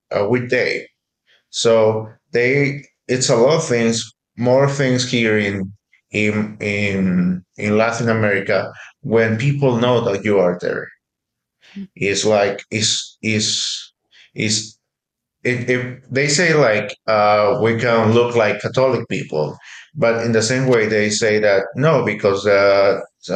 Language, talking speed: English, 135 wpm